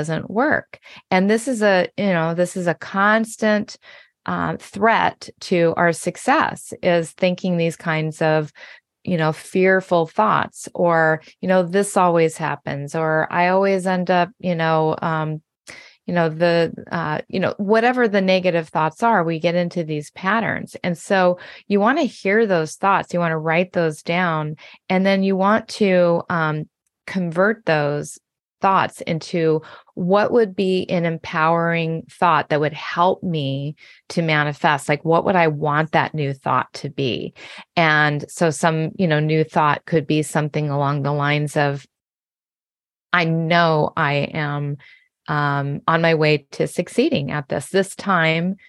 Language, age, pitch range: English, 30-49, 155-185 Hz